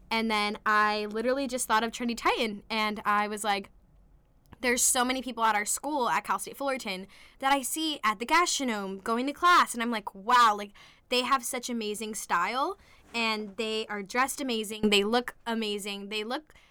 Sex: female